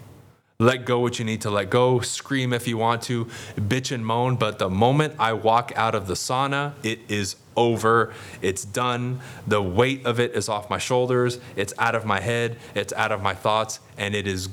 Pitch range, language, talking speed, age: 110-130 Hz, English, 210 wpm, 20-39